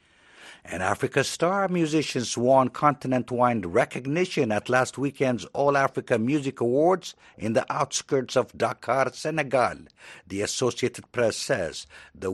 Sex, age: male, 60-79